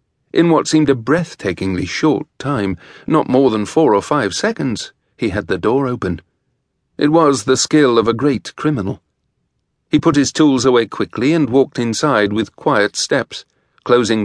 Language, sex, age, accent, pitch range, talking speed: English, male, 40-59, British, 110-145 Hz, 170 wpm